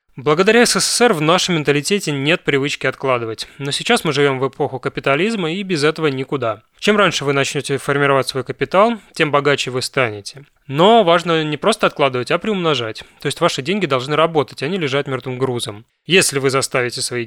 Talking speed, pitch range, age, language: 185 wpm, 130-170 Hz, 20-39, Russian